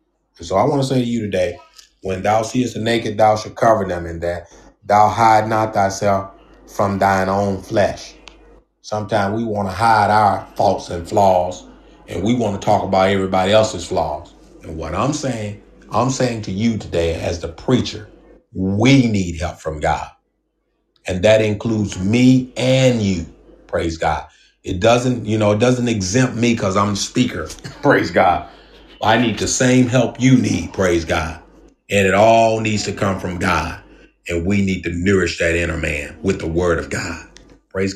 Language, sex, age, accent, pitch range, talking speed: English, male, 30-49, American, 95-110 Hz, 180 wpm